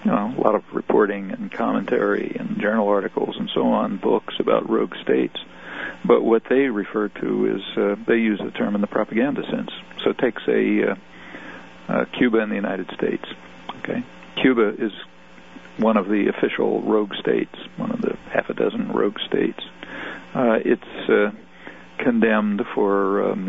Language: English